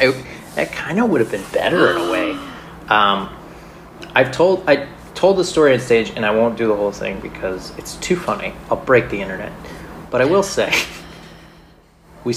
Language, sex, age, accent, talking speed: English, male, 30-49, American, 190 wpm